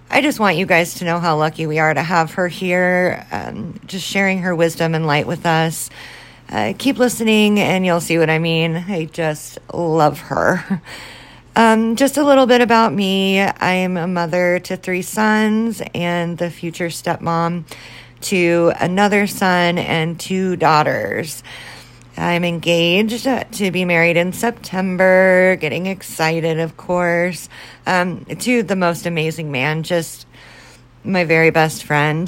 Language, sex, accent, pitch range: English, female, American, 165-195 Hz